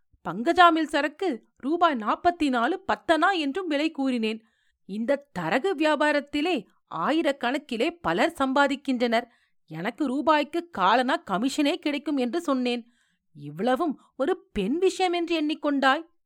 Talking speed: 105 wpm